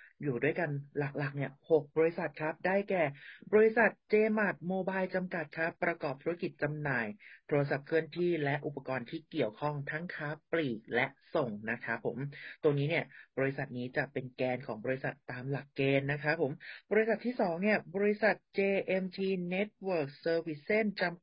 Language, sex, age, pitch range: Thai, male, 30-49, 135-180 Hz